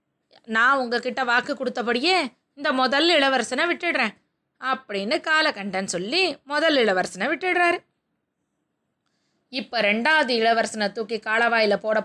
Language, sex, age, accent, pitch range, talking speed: Tamil, female, 20-39, native, 220-315 Hz, 100 wpm